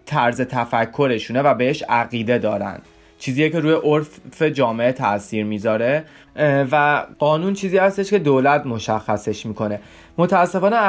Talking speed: 120 wpm